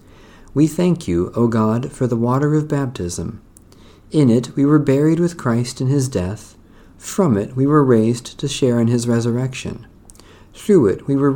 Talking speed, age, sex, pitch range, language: 180 wpm, 50-69, male, 95-145 Hz, English